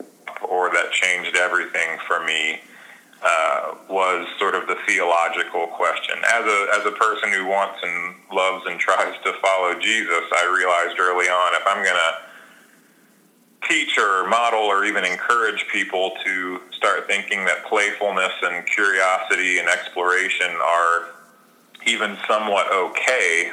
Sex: male